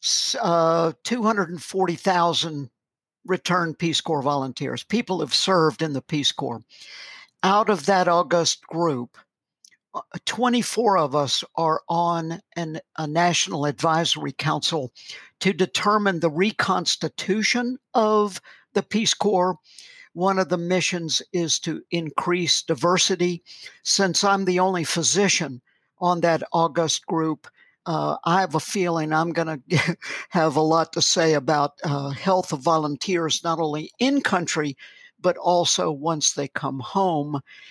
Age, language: 60-79, English